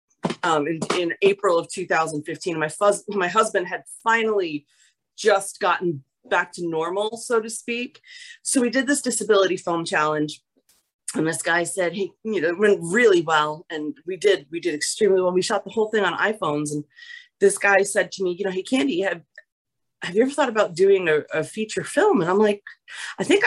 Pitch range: 160-225 Hz